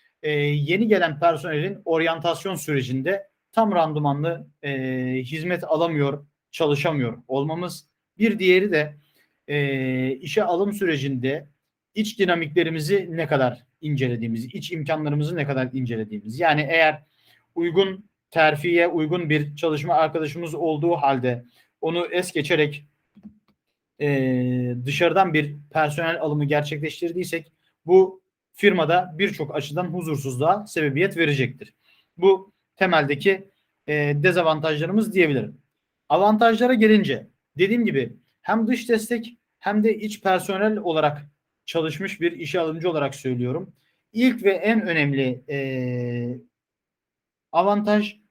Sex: male